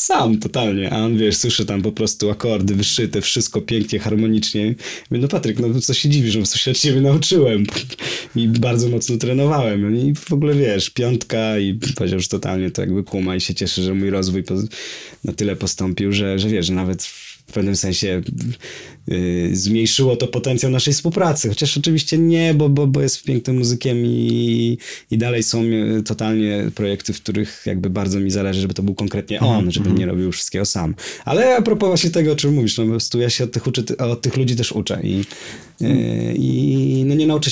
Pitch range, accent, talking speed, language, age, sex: 95-130 Hz, native, 195 wpm, Polish, 20-39, male